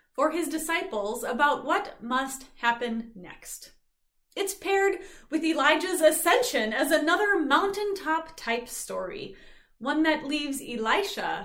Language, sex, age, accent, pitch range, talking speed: English, female, 30-49, American, 230-320 Hz, 110 wpm